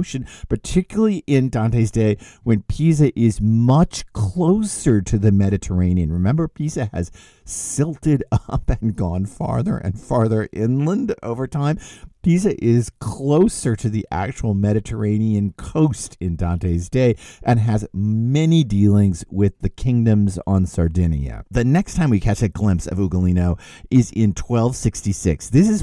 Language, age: English, 50-69